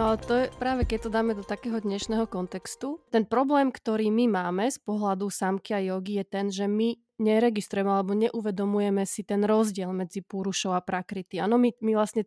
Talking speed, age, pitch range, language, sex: 190 wpm, 20-39, 195-220 Hz, Slovak, female